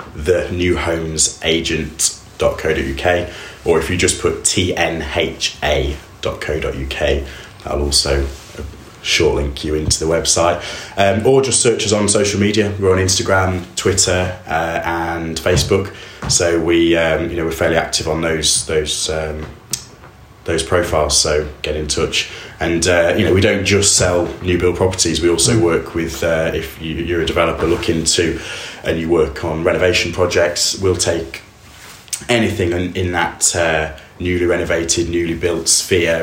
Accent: British